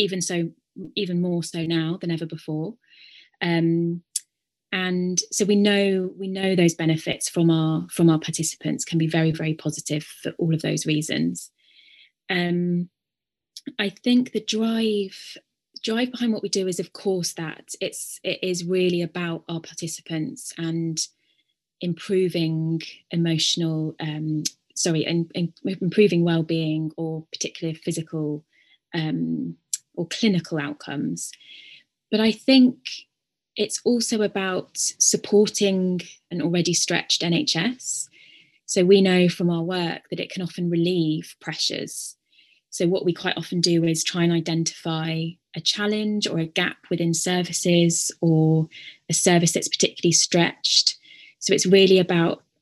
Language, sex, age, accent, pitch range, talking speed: English, female, 20-39, British, 165-190 Hz, 135 wpm